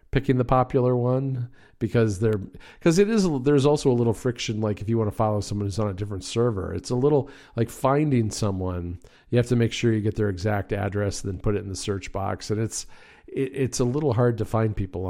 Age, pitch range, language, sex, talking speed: 50-69, 100-120 Hz, English, male, 240 wpm